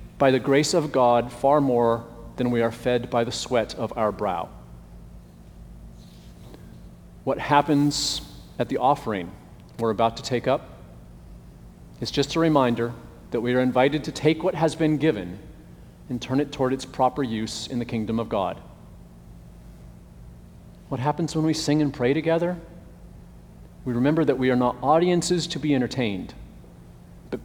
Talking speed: 155 wpm